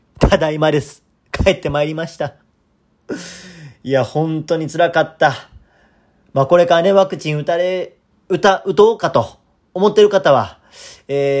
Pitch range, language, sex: 135-185 Hz, Japanese, male